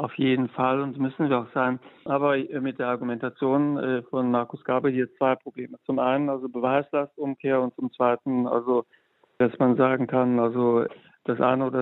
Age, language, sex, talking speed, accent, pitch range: 60-79, German, male, 175 wpm, German, 125-140 Hz